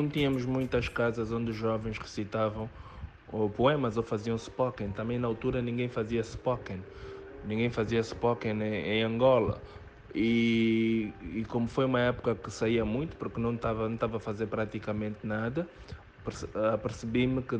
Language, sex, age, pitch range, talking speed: Portuguese, male, 20-39, 105-125 Hz, 145 wpm